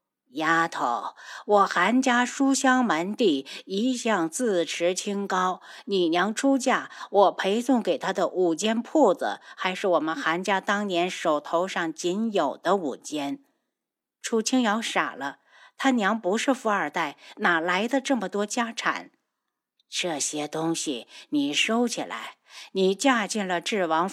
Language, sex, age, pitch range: Chinese, female, 50-69, 185-255 Hz